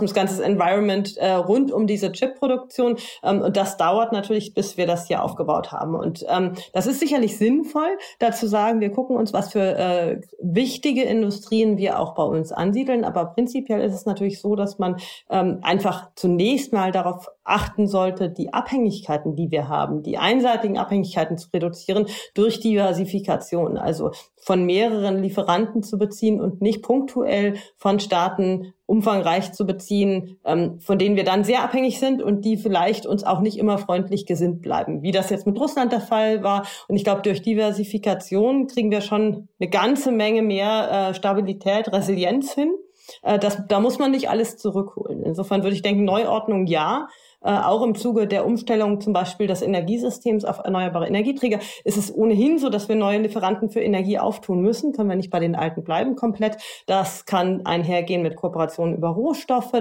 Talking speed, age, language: 180 wpm, 40-59, German